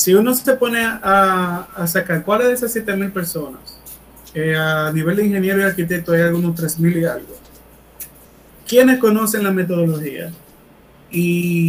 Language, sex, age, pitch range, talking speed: Spanish, male, 30-49, 165-205 Hz, 155 wpm